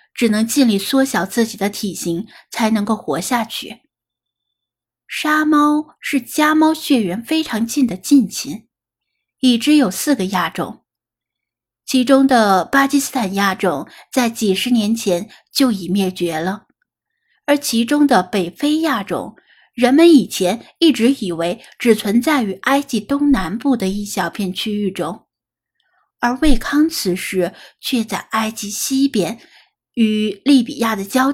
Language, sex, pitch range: Chinese, female, 200-275 Hz